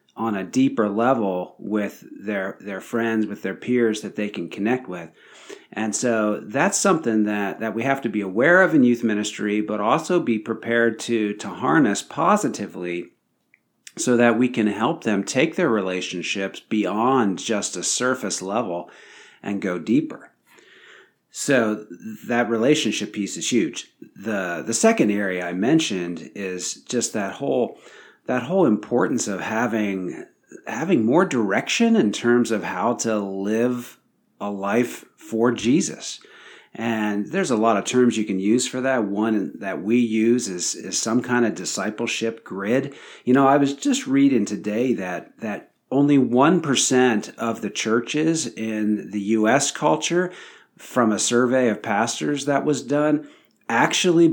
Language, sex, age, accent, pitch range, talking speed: English, male, 50-69, American, 105-125 Hz, 155 wpm